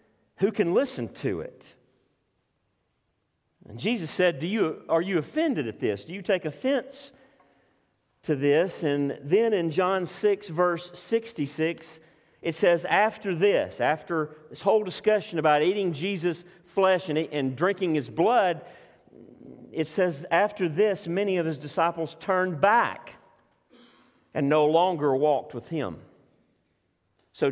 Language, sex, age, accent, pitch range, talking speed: English, male, 50-69, American, 145-195 Hz, 135 wpm